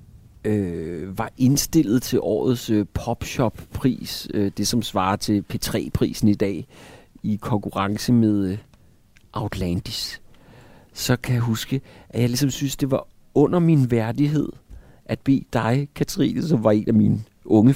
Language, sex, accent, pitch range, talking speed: Danish, male, native, 105-130 Hz, 140 wpm